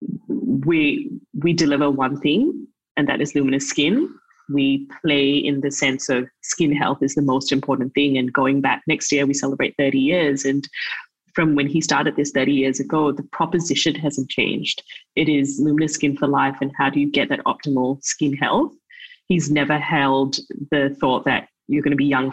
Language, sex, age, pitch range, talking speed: English, female, 20-39, 135-150 Hz, 190 wpm